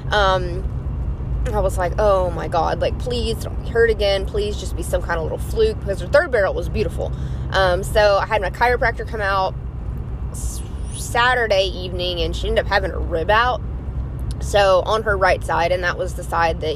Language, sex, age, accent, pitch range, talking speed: English, female, 20-39, American, 180-225 Hz, 200 wpm